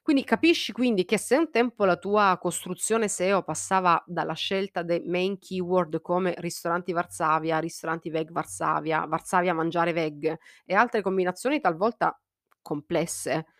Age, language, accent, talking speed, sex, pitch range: 30-49, Italian, native, 135 wpm, female, 165-210 Hz